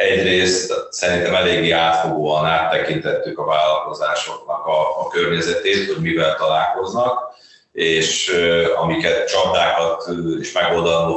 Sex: male